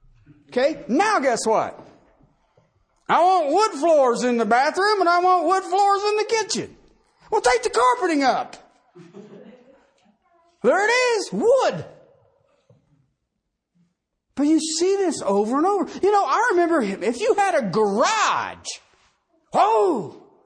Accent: American